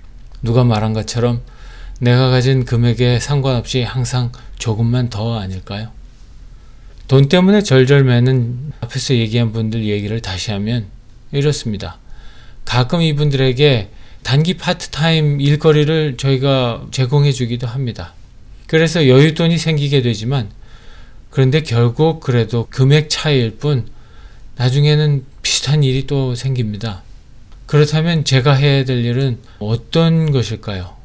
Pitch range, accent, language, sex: 115-140 Hz, native, Korean, male